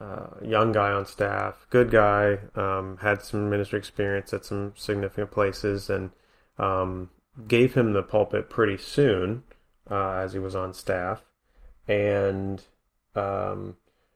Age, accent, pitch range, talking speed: 30-49, American, 95-105 Hz, 135 wpm